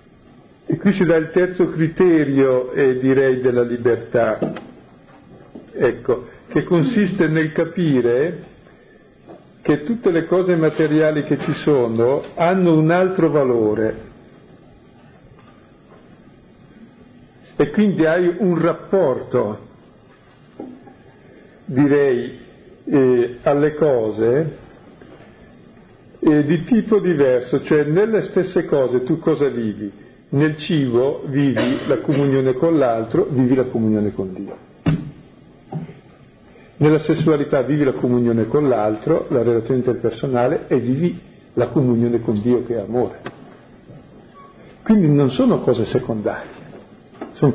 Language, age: Italian, 50-69